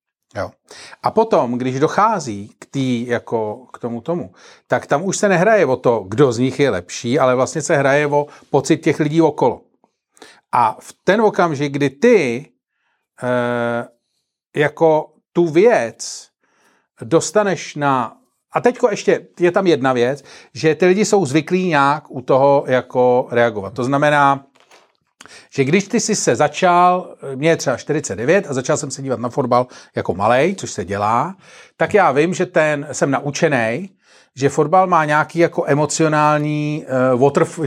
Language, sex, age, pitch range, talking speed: Czech, male, 40-59, 130-165 Hz, 160 wpm